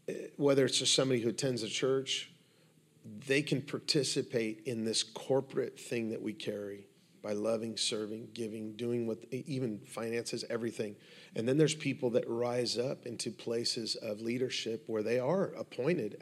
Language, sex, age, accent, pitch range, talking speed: English, male, 40-59, American, 120-145 Hz, 155 wpm